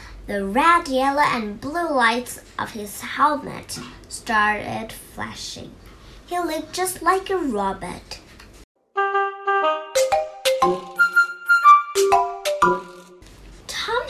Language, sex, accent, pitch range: Chinese, male, American, 200-310 Hz